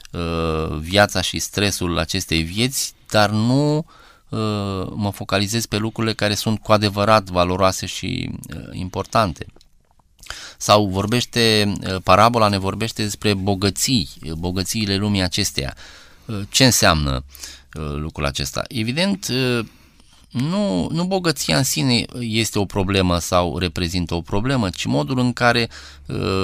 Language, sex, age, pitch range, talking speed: Romanian, male, 20-39, 90-115 Hz, 125 wpm